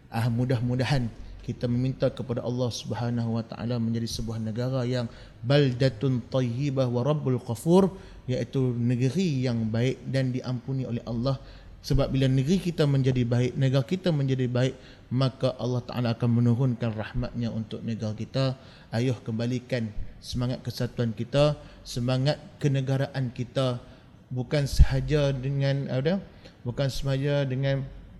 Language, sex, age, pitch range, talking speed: Malay, male, 30-49, 120-145 Hz, 130 wpm